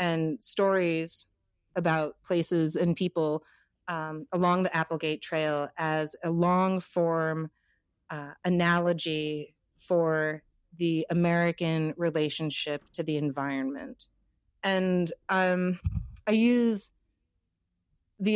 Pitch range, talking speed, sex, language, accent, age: 150-180 Hz, 90 wpm, female, English, American, 30-49